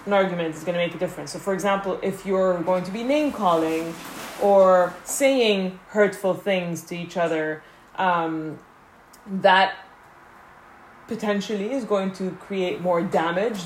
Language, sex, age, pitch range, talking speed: English, female, 20-39, 170-200 Hz, 150 wpm